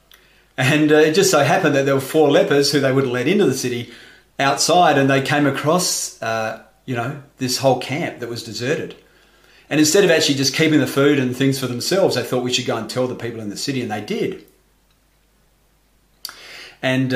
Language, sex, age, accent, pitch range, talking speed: English, male, 40-59, Australian, 125-150 Hz, 215 wpm